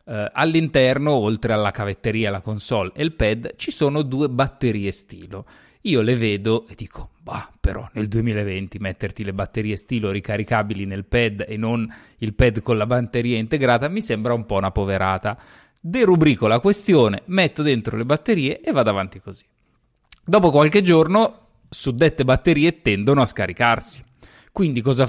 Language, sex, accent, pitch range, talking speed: Italian, male, native, 110-150 Hz, 155 wpm